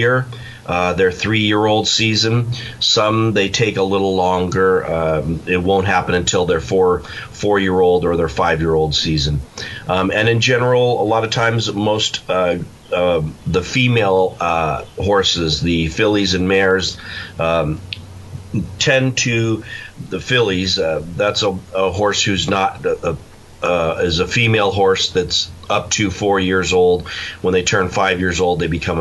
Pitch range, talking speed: 90-105 Hz, 150 wpm